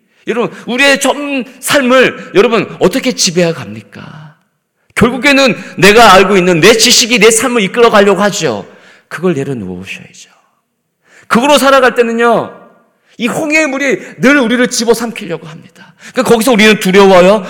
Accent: native